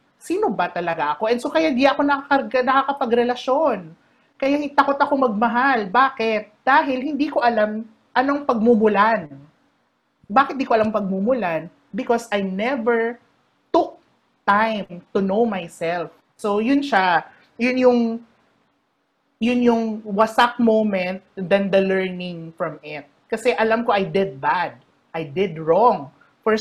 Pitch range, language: 175-240 Hz, Filipino